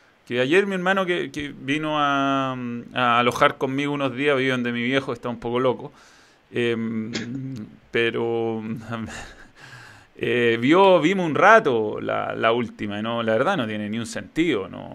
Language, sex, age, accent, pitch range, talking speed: Spanish, male, 20-39, Argentinian, 120-145 Hz, 160 wpm